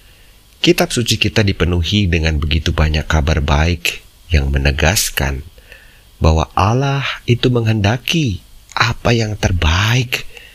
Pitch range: 80-105 Hz